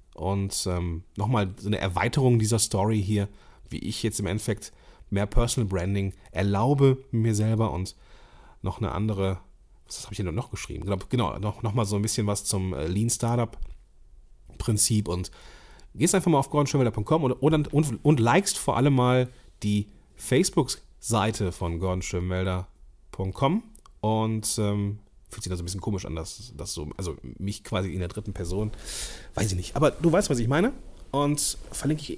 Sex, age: male, 30-49